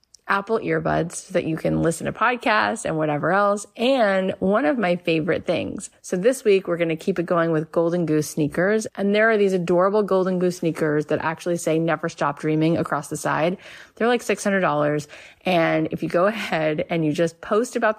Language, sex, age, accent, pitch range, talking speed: English, female, 30-49, American, 160-200 Hz, 205 wpm